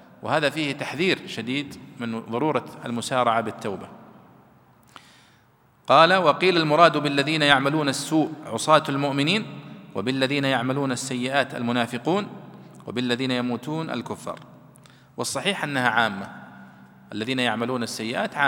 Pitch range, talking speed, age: 120-150 Hz, 95 wpm, 40-59